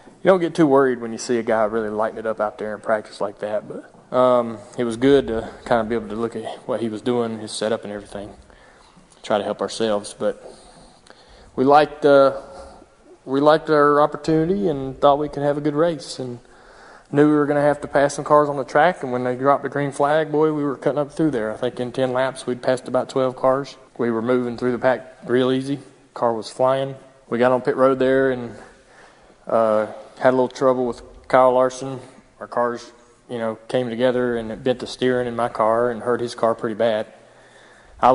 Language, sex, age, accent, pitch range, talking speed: English, male, 20-39, American, 115-130 Hz, 230 wpm